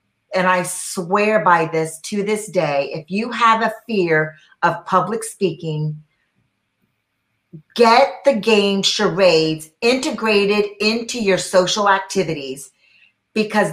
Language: English